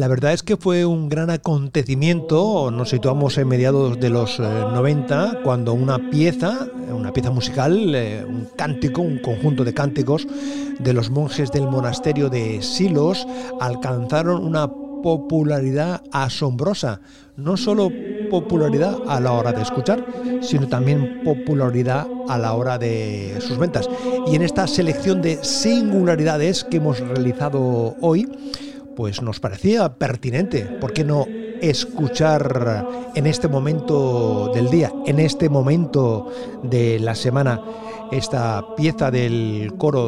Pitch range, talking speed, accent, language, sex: 125-165 Hz, 135 wpm, Spanish, Spanish, male